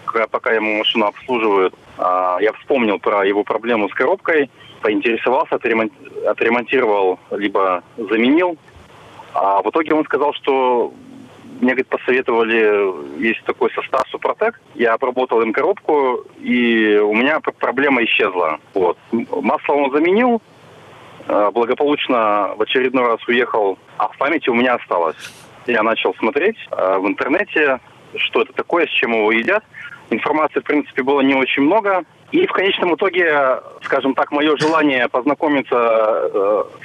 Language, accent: Russian, native